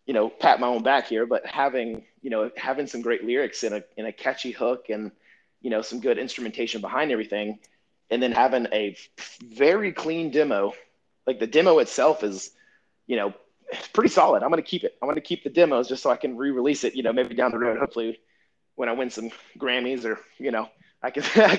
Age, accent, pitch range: 30-49, American, 115-150 Hz